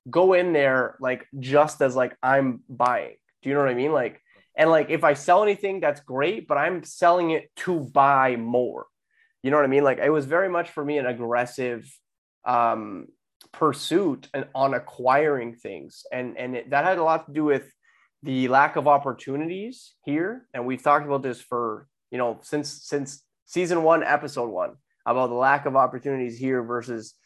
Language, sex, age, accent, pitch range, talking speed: English, male, 20-39, American, 125-155 Hz, 190 wpm